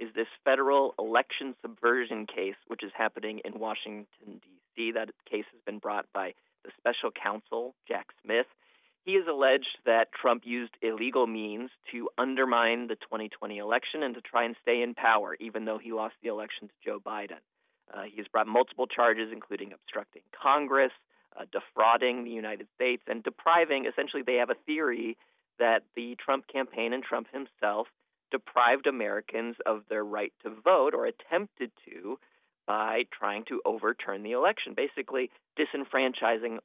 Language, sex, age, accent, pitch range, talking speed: English, male, 40-59, American, 110-135 Hz, 160 wpm